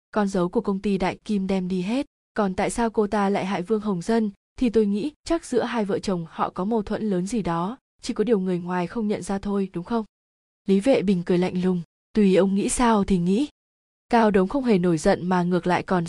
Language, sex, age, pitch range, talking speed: Vietnamese, female, 20-39, 185-230 Hz, 255 wpm